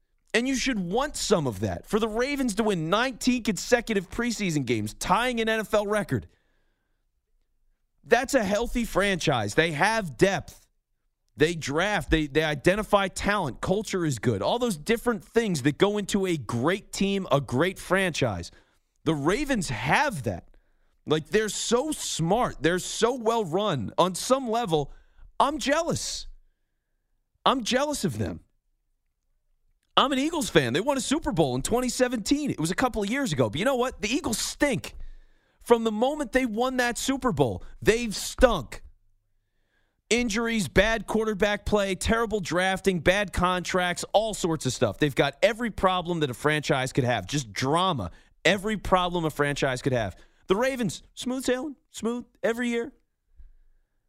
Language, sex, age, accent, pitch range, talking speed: English, male, 40-59, American, 155-235 Hz, 155 wpm